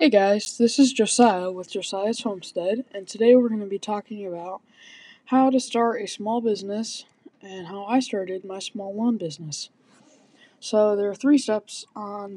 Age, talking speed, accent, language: 20-39, 175 wpm, American, English